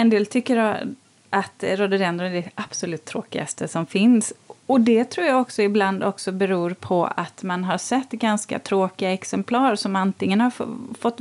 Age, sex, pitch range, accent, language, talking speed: 30-49, female, 190-230 Hz, native, Swedish, 175 wpm